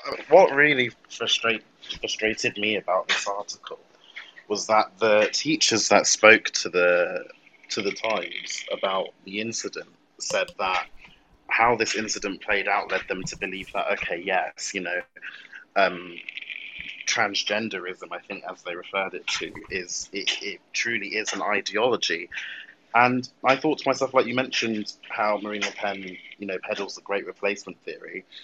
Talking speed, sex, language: 145 wpm, male, English